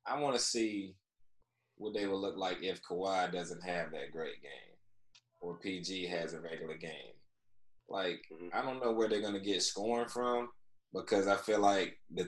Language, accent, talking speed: English, American, 185 wpm